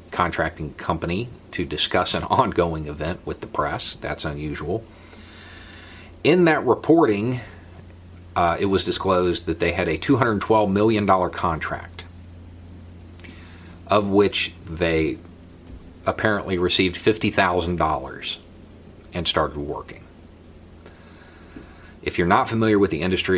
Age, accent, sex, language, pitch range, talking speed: 40-59, American, male, English, 85-100 Hz, 110 wpm